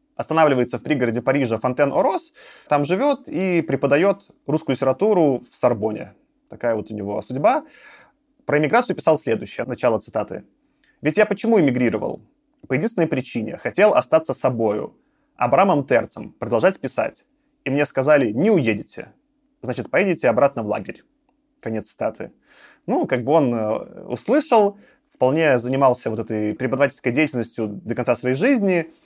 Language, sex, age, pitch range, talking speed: Russian, male, 20-39, 125-195 Hz, 135 wpm